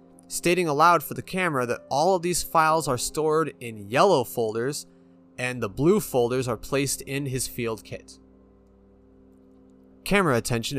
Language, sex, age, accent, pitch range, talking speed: English, male, 30-49, American, 100-150 Hz, 150 wpm